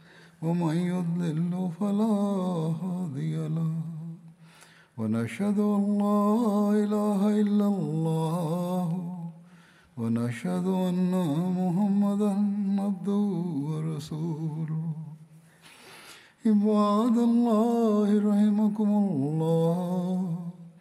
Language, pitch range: Swahili, 165-205 Hz